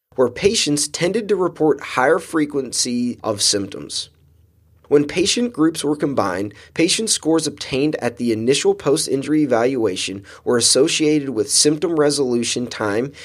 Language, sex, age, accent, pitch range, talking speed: English, male, 20-39, American, 115-150 Hz, 125 wpm